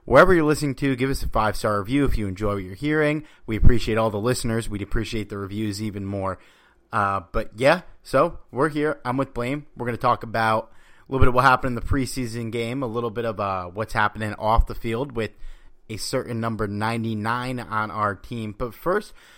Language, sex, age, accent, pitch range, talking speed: English, male, 30-49, American, 100-125 Hz, 215 wpm